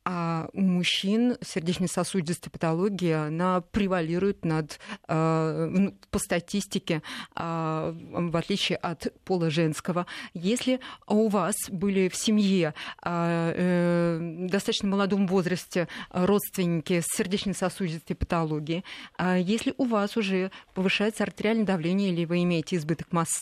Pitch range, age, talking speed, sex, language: 170-195 Hz, 30-49, 100 wpm, female, Russian